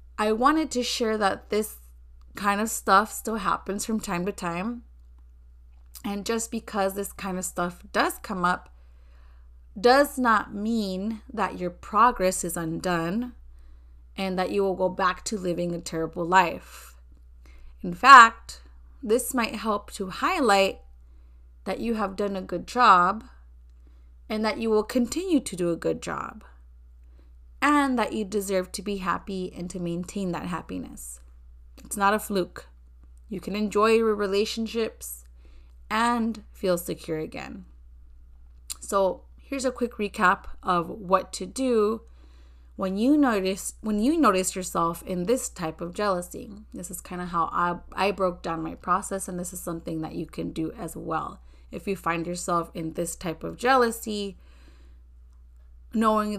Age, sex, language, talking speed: 30-49, female, English, 155 wpm